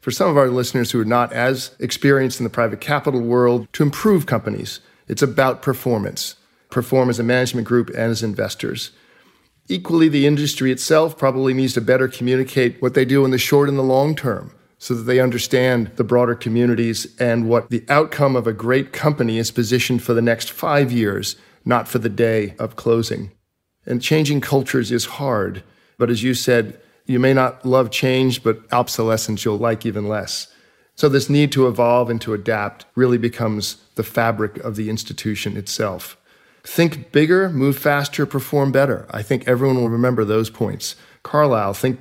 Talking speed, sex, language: 180 wpm, male, English